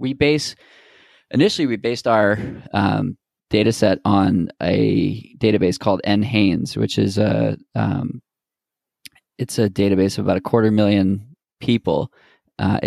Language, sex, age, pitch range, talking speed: English, male, 20-39, 100-125 Hz, 130 wpm